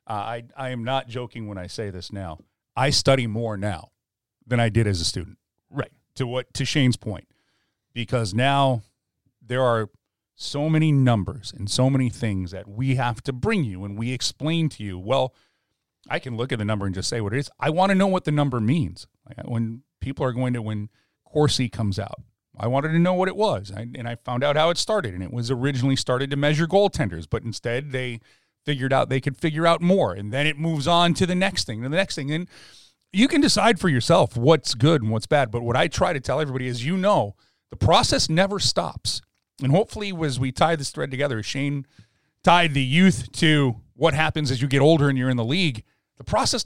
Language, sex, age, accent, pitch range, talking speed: English, male, 40-59, American, 115-150 Hz, 230 wpm